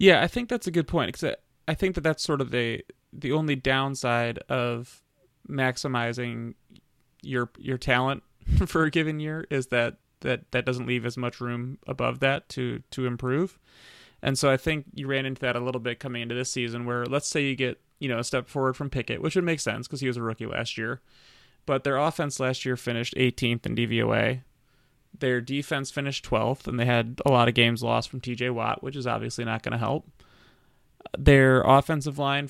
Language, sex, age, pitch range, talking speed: English, male, 30-49, 120-145 Hz, 210 wpm